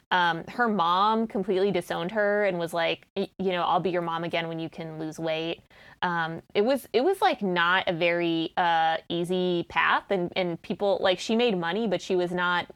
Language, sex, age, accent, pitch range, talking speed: English, female, 20-39, American, 170-210 Hz, 205 wpm